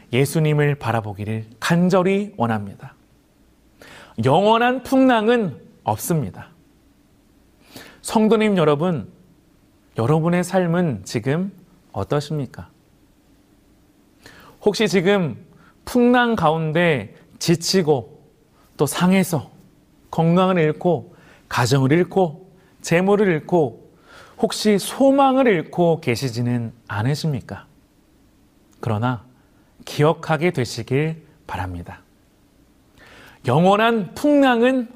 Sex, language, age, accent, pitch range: male, Korean, 40-59, native, 135-210 Hz